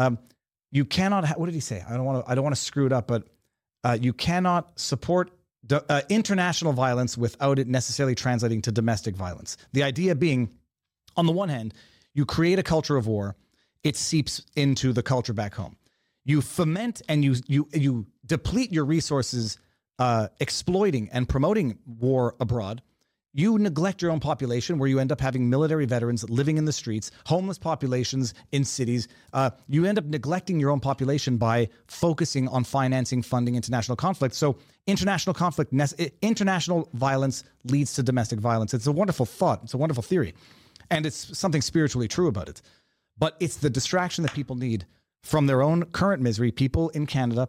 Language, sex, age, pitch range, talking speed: English, male, 30-49, 120-155 Hz, 175 wpm